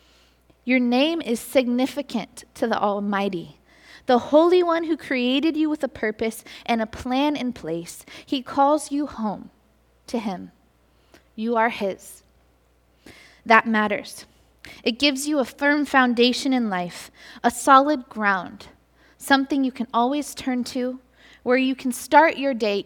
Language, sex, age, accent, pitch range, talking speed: English, female, 20-39, American, 195-265 Hz, 145 wpm